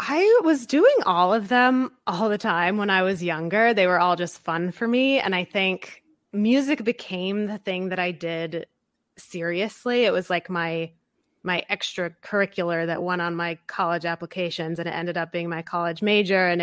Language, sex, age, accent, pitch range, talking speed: English, female, 20-39, American, 170-215 Hz, 190 wpm